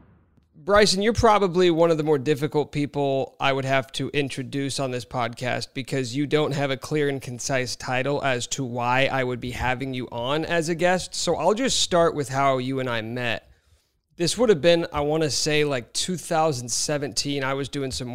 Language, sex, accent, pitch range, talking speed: English, male, American, 130-165 Hz, 205 wpm